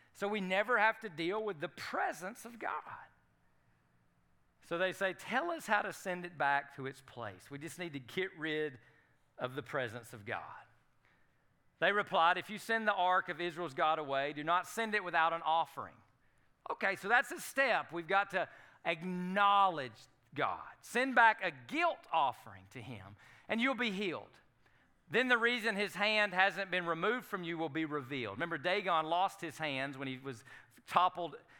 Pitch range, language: 150-200 Hz, English